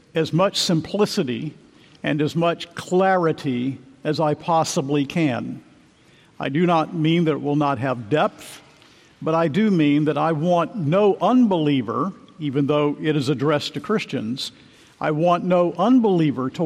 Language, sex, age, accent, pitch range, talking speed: English, male, 50-69, American, 150-190 Hz, 150 wpm